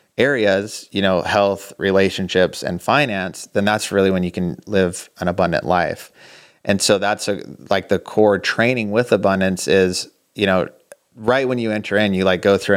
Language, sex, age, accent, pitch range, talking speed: English, male, 30-49, American, 95-105 Hz, 180 wpm